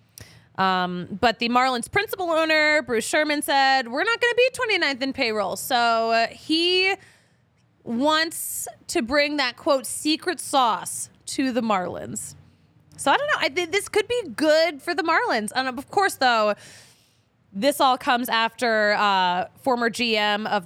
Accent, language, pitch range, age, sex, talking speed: American, English, 210-300 Hz, 20-39, female, 155 wpm